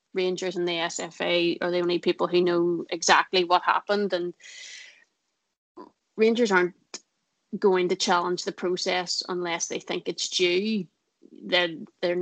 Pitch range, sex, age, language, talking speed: 175-190 Hz, female, 30-49, English, 135 wpm